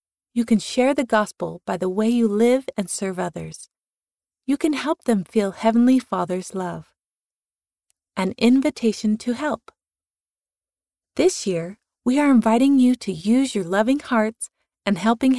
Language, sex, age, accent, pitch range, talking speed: English, female, 30-49, American, 175-245 Hz, 150 wpm